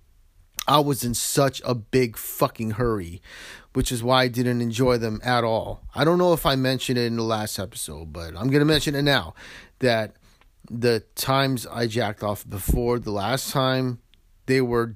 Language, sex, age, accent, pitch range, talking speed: English, male, 30-49, American, 105-135 Hz, 190 wpm